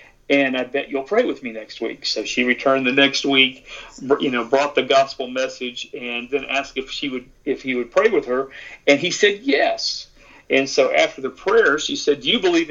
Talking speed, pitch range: 220 wpm, 125-165 Hz